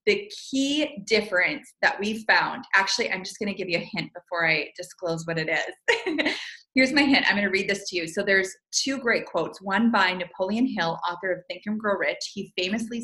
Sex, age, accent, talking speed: female, 30-49, American, 220 wpm